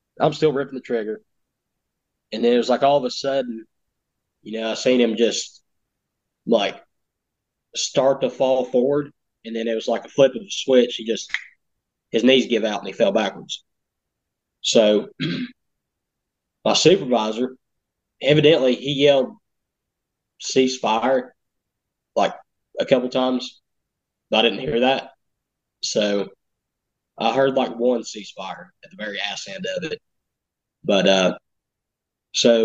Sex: male